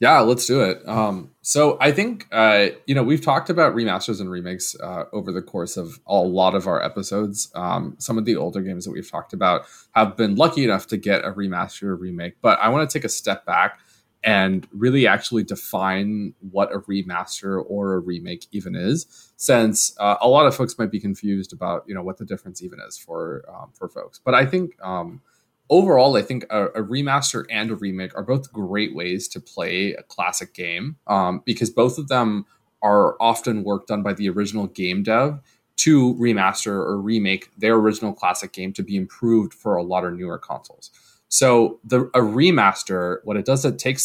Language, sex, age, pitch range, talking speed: English, male, 20-39, 95-125 Hz, 200 wpm